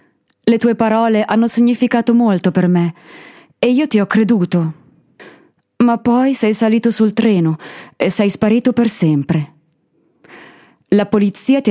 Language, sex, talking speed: English, female, 140 wpm